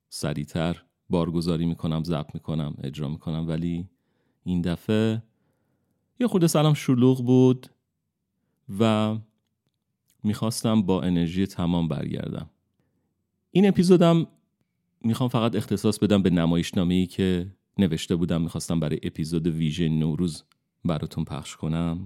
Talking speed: 105 wpm